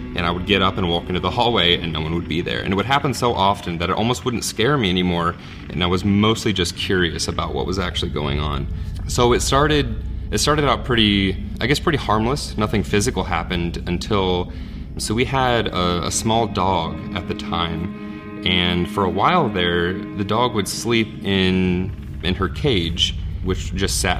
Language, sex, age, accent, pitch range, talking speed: English, male, 30-49, American, 85-110 Hz, 205 wpm